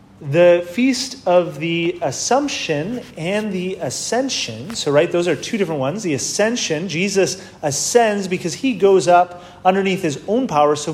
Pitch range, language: 155-210 Hz, English